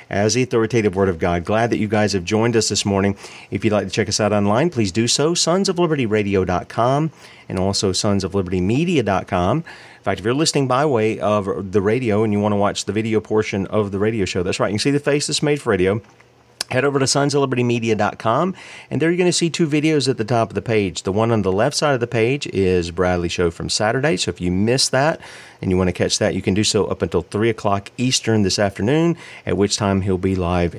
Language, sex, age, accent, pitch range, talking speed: English, male, 40-59, American, 100-135 Hz, 240 wpm